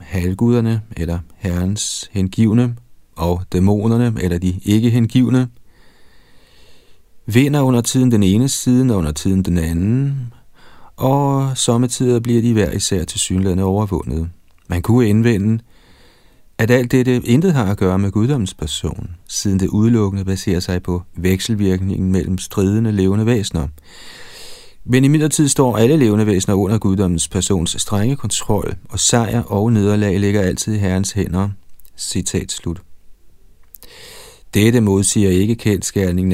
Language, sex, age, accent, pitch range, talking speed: Danish, male, 40-59, native, 90-115 Hz, 130 wpm